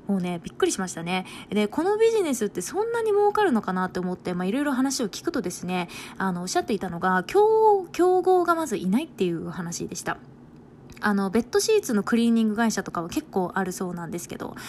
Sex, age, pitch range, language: female, 20-39, 185-275 Hz, Japanese